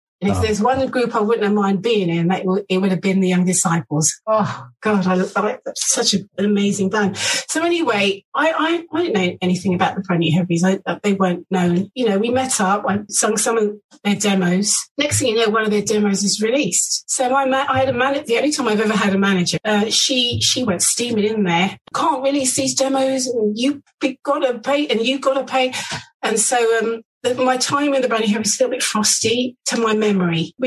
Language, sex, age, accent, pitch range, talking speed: English, female, 40-59, British, 190-245 Hz, 225 wpm